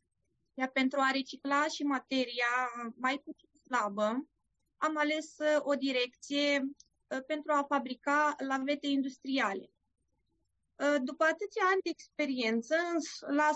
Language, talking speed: Romanian, 100 wpm